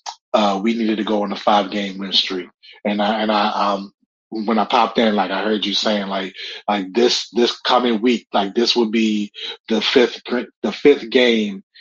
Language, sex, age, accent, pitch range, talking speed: English, male, 30-49, American, 105-120 Hz, 205 wpm